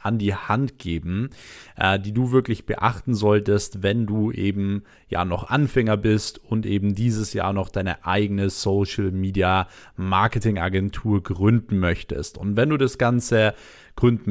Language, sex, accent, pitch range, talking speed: German, male, German, 100-115 Hz, 145 wpm